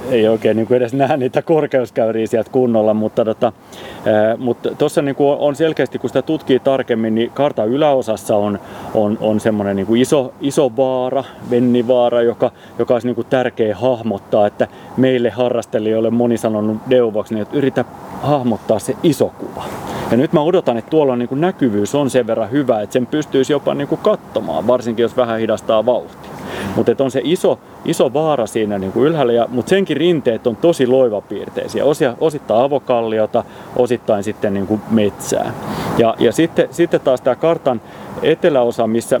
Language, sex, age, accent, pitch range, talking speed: Finnish, male, 30-49, native, 110-135 Hz, 160 wpm